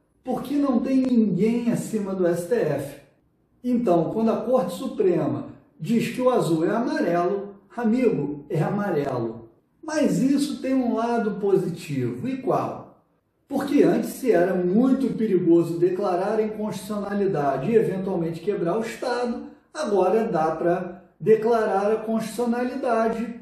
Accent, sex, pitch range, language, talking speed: Brazilian, male, 185-245 Hz, Portuguese, 125 wpm